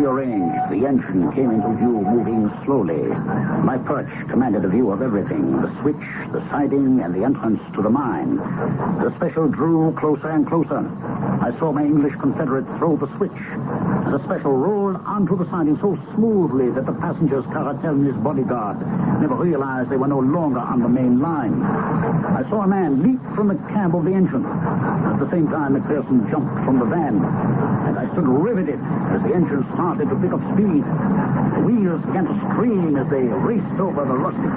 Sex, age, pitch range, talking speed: male, 60-79, 155-245 Hz, 190 wpm